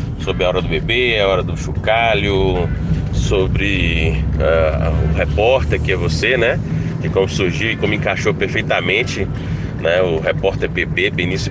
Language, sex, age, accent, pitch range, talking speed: Portuguese, male, 30-49, Brazilian, 80-100 Hz, 150 wpm